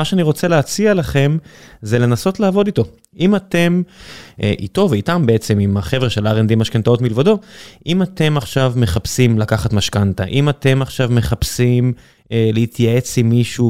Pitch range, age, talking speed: 110-140 Hz, 20-39, 150 wpm